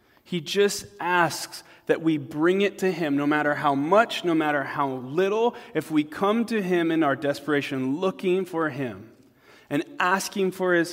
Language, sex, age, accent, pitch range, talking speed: English, male, 30-49, American, 135-175 Hz, 175 wpm